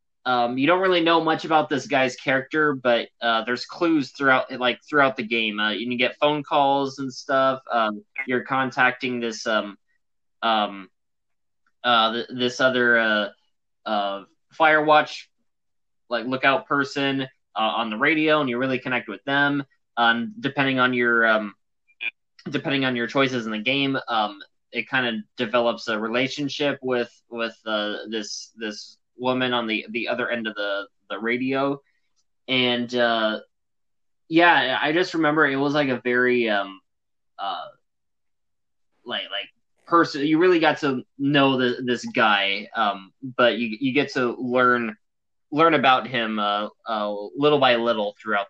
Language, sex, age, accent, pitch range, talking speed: English, male, 20-39, American, 115-140 Hz, 160 wpm